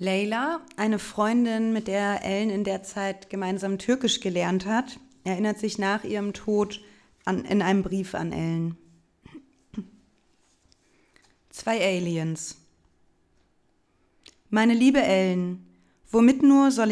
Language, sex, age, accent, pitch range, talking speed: German, female, 20-39, German, 185-235 Hz, 110 wpm